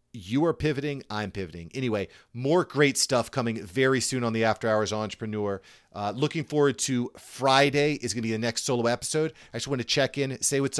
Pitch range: 110-135 Hz